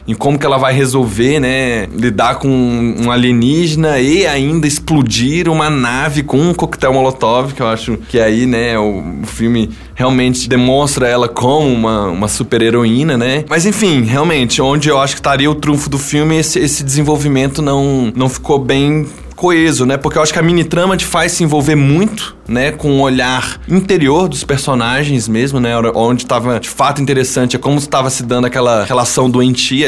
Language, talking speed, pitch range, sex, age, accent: Portuguese, 185 wpm, 125-150 Hz, male, 20-39, Brazilian